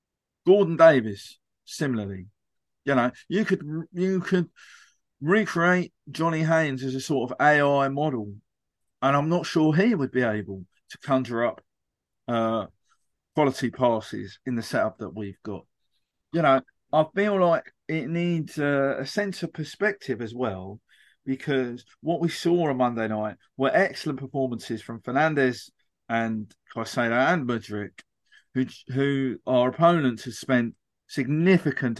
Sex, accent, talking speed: male, British, 145 wpm